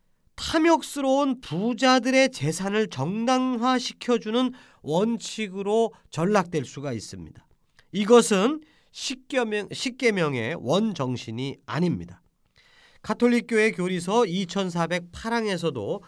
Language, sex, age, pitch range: Korean, male, 40-59, 160-250 Hz